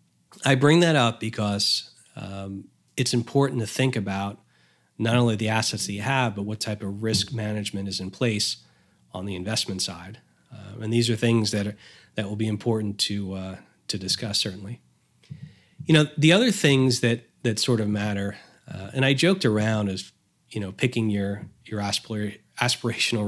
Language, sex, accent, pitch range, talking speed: English, male, American, 105-125 Hz, 180 wpm